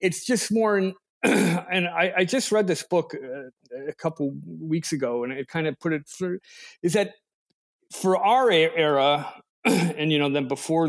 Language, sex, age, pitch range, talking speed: English, male, 40-59, 145-200 Hz, 170 wpm